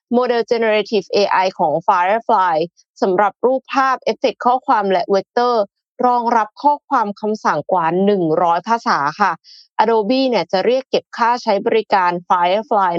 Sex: female